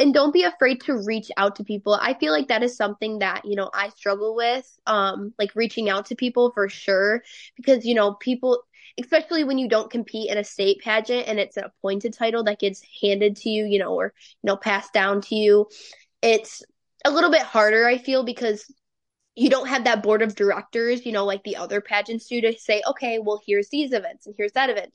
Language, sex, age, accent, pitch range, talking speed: English, female, 10-29, American, 210-250 Hz, 225 wpm